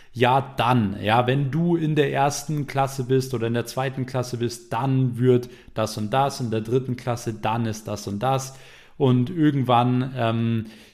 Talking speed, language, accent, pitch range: 180 wpm, German, German, 115-140 Hz